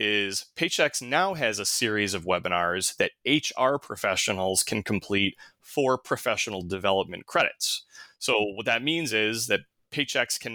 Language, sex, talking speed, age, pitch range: English, male, 140 wpm, 20-39, 100-125 Hz